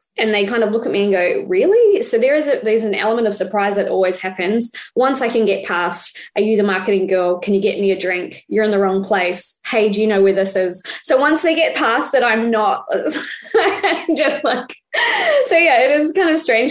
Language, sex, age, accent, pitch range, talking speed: English, female, 20-39, Australian, 195-260 Hz, 235 wpm